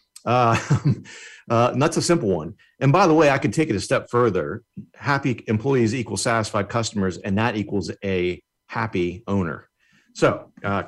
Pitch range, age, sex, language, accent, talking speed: 95-130 Hz, 40-59, male, English, American, 165 wpm